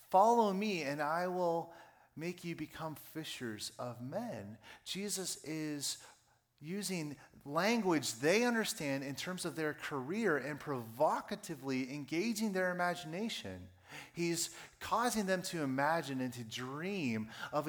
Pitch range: 130-185 Hz